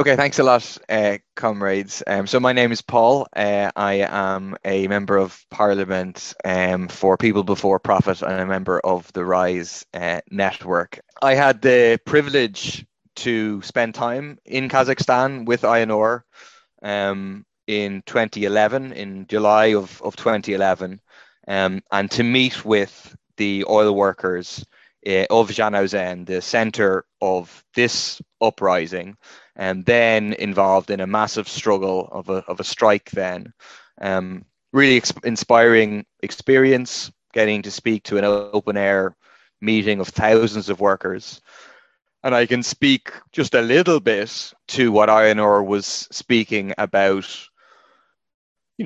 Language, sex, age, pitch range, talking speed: English, male, 20-39, 95-120 Hz, 140 wpm